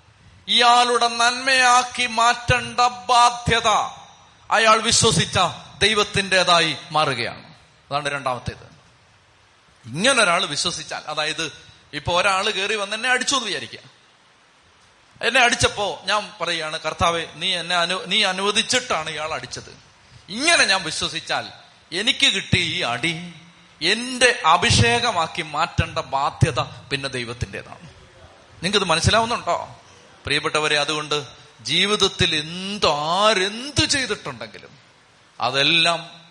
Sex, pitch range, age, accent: male, 140-205 Hz, 30-49, native